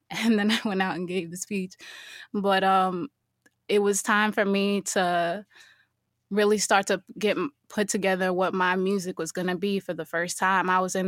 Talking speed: 200 wpm